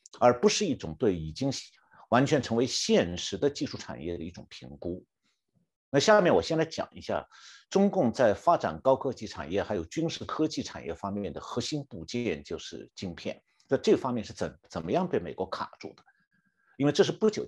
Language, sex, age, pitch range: Chinese, male, 50-69, 100-165 Hz